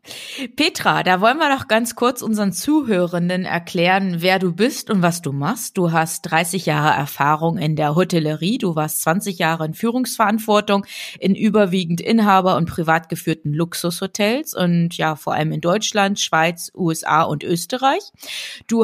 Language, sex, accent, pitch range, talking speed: German, female, German, 175-225 Hz, 155 wpm